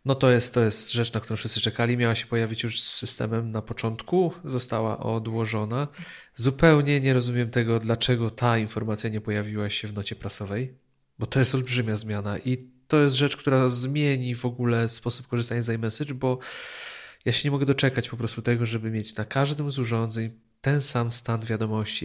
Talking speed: 185 wpm